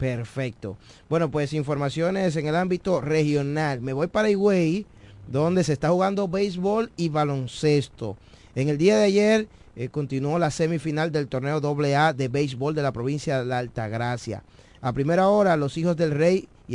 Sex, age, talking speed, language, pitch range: male, 30-49, 170 wpm, Spanish, 130-160 Hz